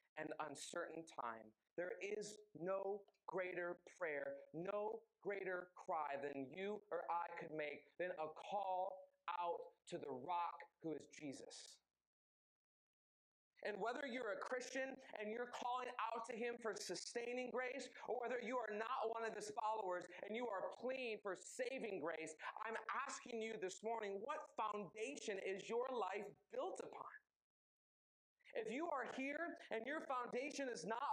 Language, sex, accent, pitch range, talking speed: English, male, American, 180-260 Hz, 150 wpm